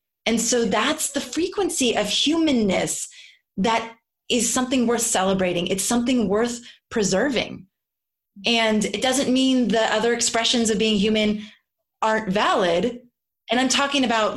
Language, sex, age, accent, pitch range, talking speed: English, female, 20-39, American, 195-240 Hz, 135 wpm